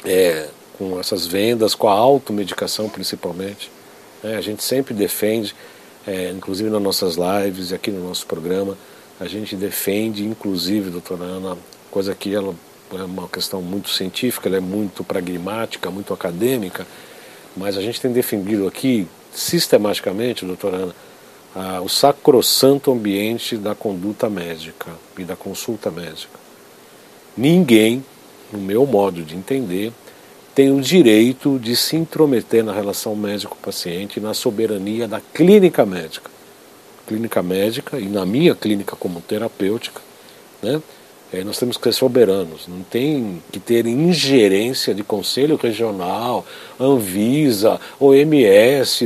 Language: Portuguese